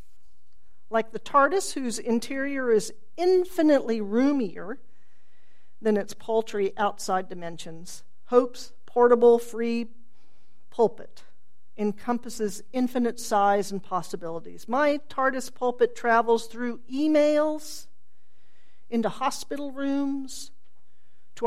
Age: 50-69